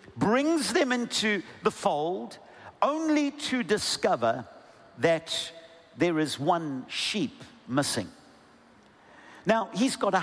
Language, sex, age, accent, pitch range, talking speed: English, male, 50-69, British, 165-250 Hz, 105 wpm